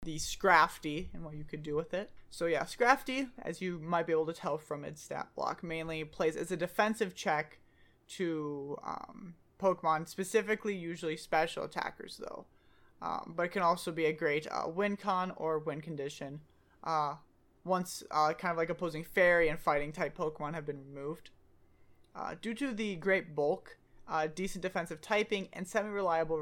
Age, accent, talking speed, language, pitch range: 20-39, American, 175 wpm, English, 155-190 Hz